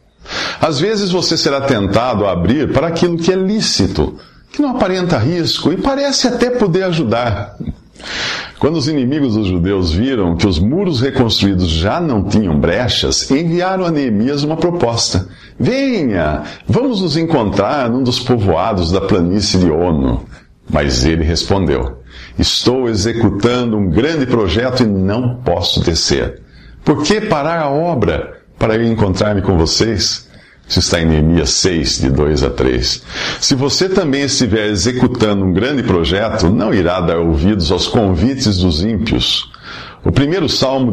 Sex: male